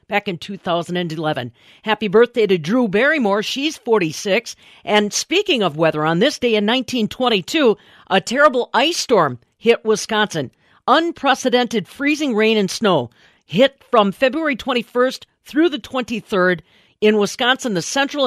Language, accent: English, American